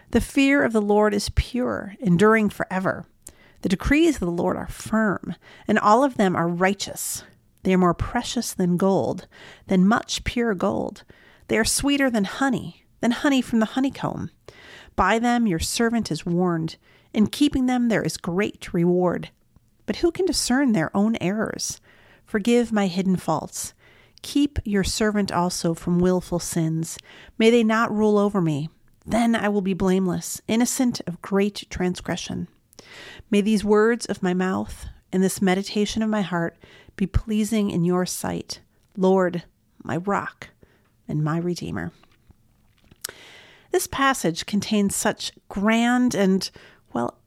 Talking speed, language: 150 wpm, English